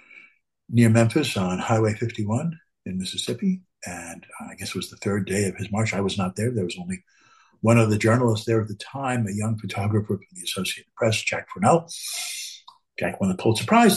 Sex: male